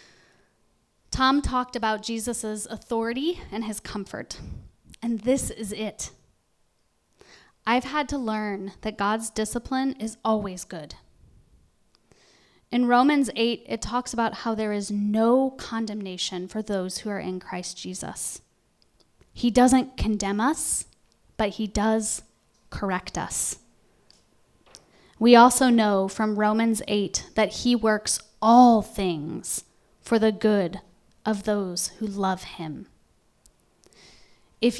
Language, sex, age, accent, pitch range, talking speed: English, female, 10-29, American, 195-230 Hz, 120 wpm